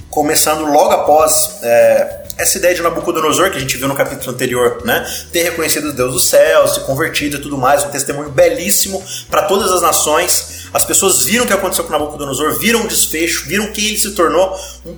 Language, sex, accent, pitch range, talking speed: Portuguese, male, Brazilian, 160-210 Hz, 200 wpm